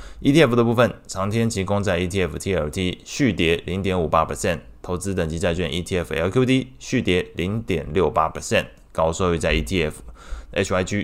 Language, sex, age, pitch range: Chinese, male, 20-39, 80-105 Hz